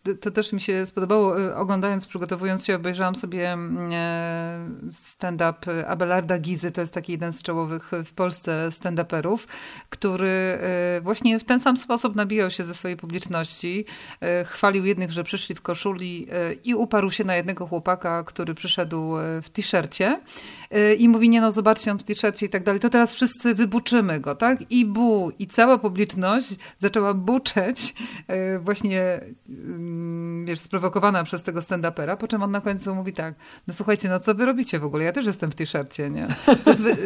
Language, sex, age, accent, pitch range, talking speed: Polish, female, 30-49, native, 180-220 Hz, 165 wpm